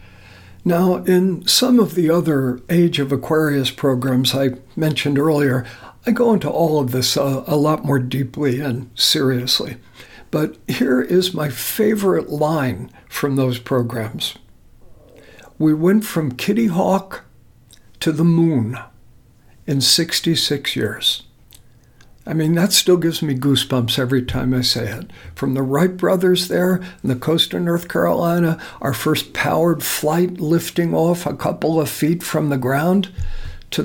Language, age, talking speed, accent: English, 60-79, 145 wpm, American